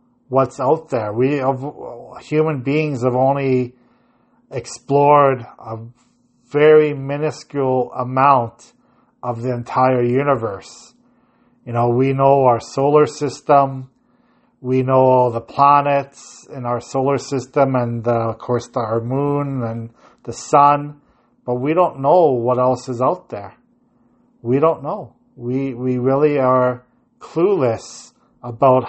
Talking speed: 125 wpm